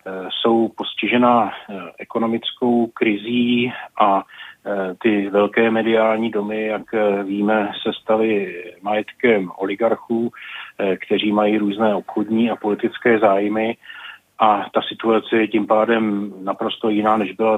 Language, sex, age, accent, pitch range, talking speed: Czech, male, 30-49, native, 105-110 Hz, 110 wpm